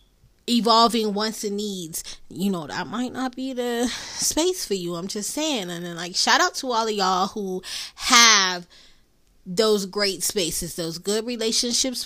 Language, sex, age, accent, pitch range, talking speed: English, female, 20-39, American, 175-230 Hz, 170 wpm